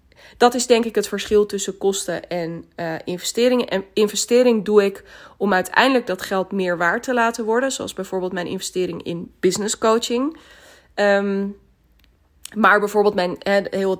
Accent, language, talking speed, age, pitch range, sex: Dutch, Dutch, 150 wpm, 20-39, 185-220 Hz, female